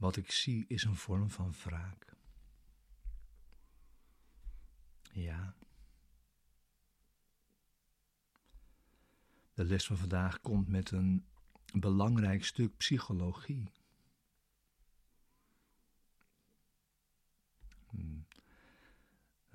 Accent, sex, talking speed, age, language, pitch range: Dutch, male, 60 wpm, 60-79, Dutch, 80-100 Hz